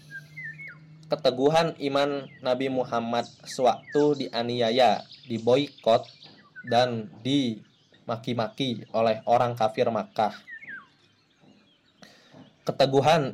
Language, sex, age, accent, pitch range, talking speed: Indonesian, male, 20-39, native, 115-135 Hz, 65 wpm